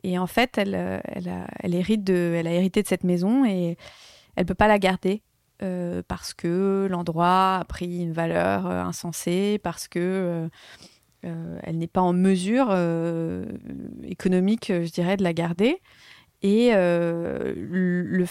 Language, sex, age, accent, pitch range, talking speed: French, female, 30-49, French, 175-210 Hz, 155 wpm